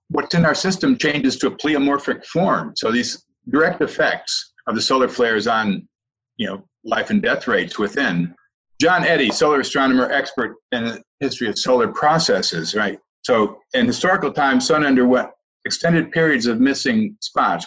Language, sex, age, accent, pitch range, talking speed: English, male, 50-69, American, 120-180 Hz, 165 wpm